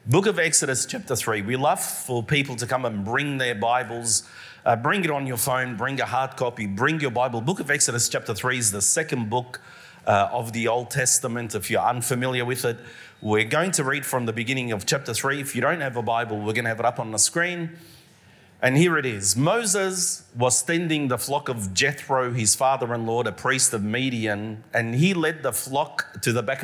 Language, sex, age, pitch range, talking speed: English, male, 40-59, 120-160 Hz, 220 wpm